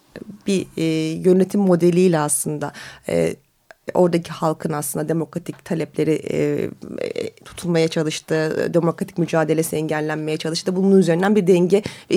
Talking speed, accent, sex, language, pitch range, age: 120 wpm, native, female, Turkish, 175-220 Hz, 30-49